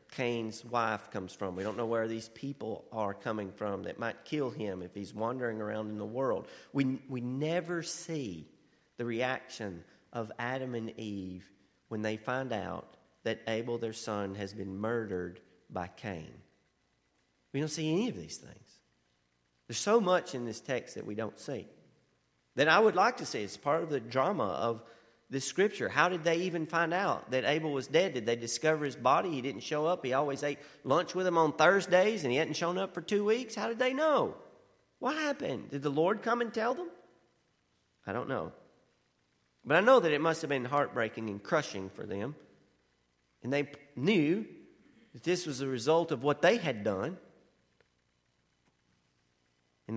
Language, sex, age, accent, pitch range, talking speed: English, male, 40-59, American, 100-160 Hz, 185 wpm